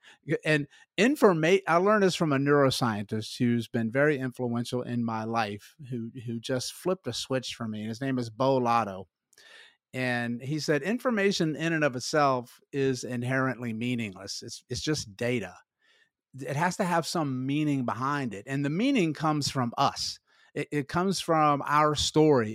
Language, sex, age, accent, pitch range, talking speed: English, male, 50-69, American, 125-155 Hz, 170 wpm